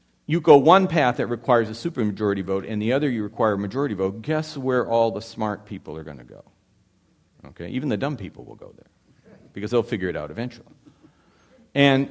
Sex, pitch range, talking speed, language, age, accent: male, 90-125 Hz, 210 wpm, English, 50-69, American